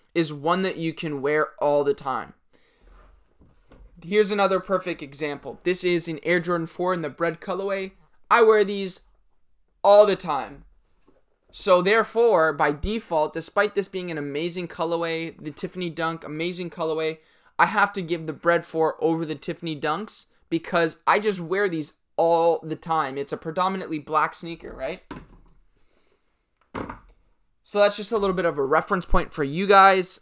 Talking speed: 165 wpm